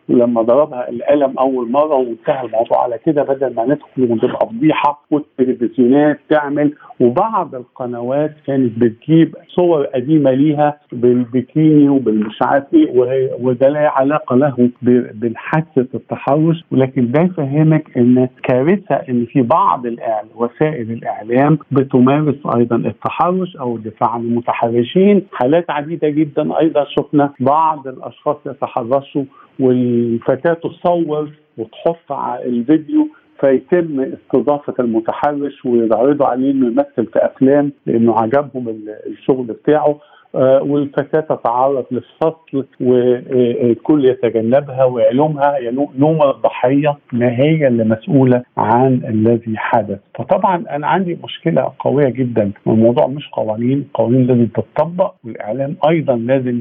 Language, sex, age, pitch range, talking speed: Arabic, male, 50-69, 120-150 Hz, 110 wpm